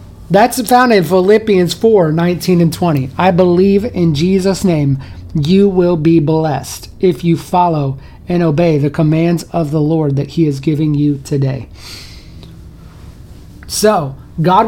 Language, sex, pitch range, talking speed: English, male, 150-200 Hz, 145 wpm